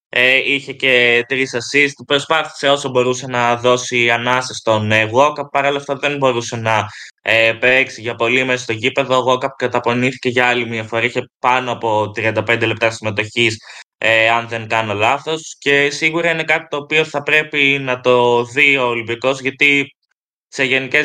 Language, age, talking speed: Greek, 20-39, 175 wpm